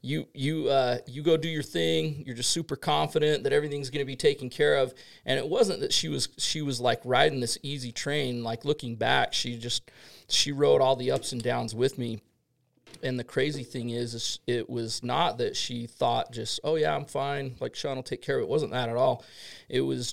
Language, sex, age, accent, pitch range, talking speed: English, male, 40-59, American, 120-145 Hz, 225 wpm